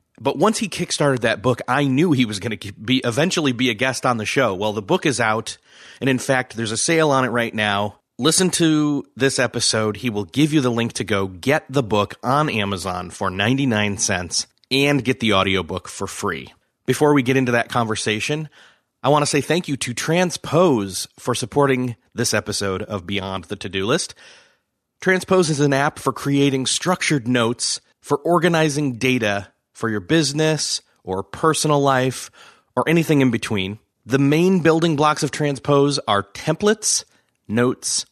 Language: English